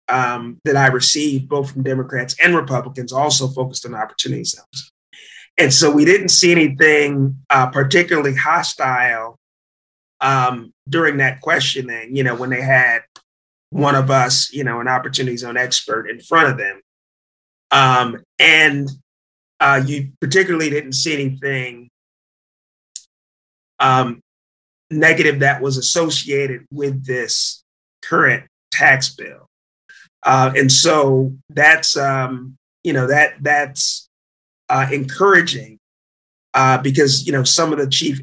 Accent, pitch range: American, 125-145 Hz